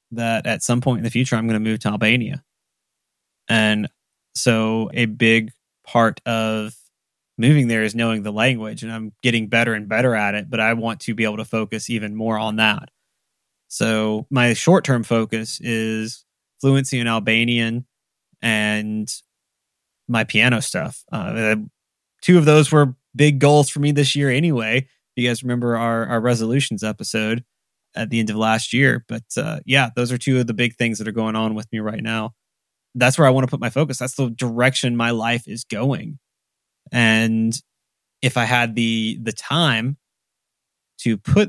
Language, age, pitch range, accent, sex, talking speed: English, 20-39, 110-125 Hz, American, male, 180 wpm